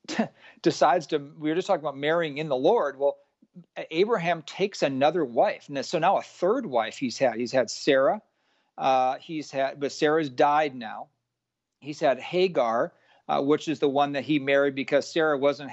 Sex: male